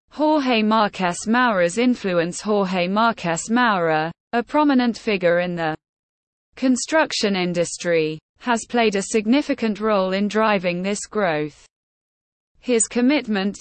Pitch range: 180-245 Hz